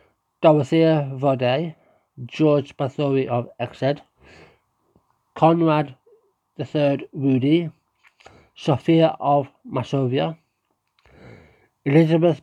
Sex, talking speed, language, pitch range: male, 65 wpm, English, 130-160 Hz